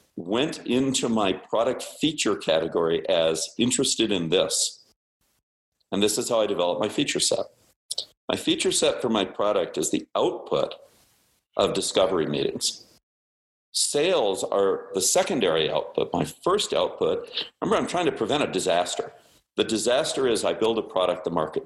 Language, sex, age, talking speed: English, male, 50-69, 150 wpm